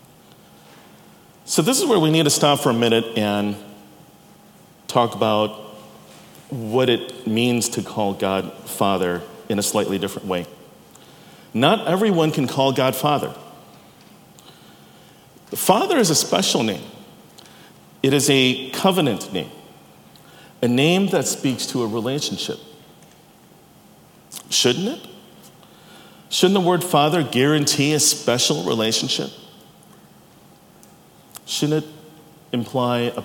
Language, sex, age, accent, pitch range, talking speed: English, male, 40-59, American, 115-160 Hz, 115 wpm